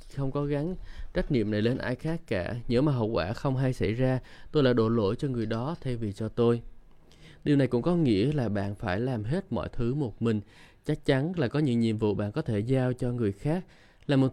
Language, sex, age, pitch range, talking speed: Vietnamese, male, 20-39, 110-140 Hz, 245 wpm